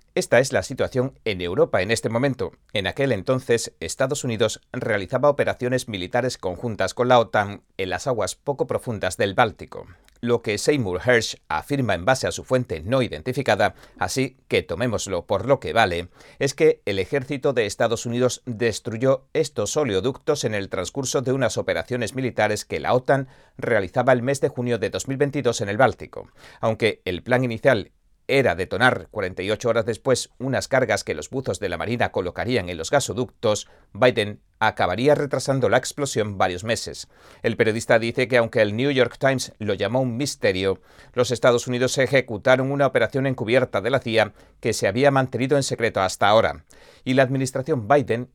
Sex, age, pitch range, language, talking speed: male, 40-59, 110-135 Hz, Spanish, 175 wpm